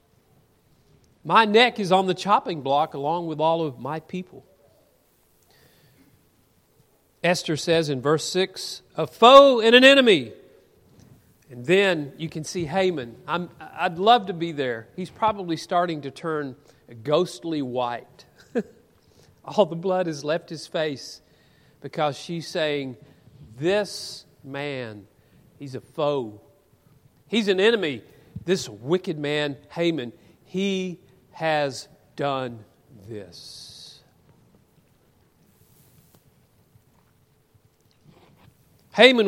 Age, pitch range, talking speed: 40-59, 145-200 Hz, 105 wpm